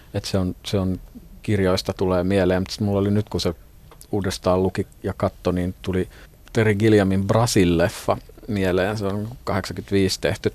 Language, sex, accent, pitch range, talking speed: Finnish, male, native, 90-105 Hz, 160 wpm